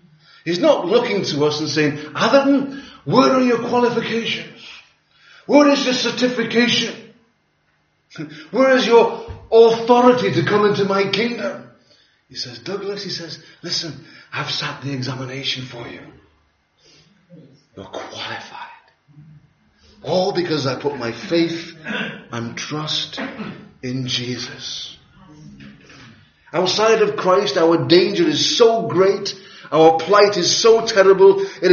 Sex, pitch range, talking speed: male, 145-205 Hz, 120 wpm